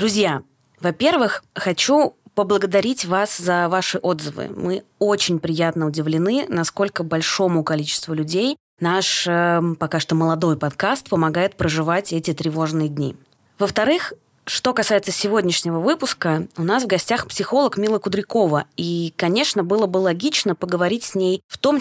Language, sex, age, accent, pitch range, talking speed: Russian, female, 20-39, native, 170-215 Hz, 135 wpm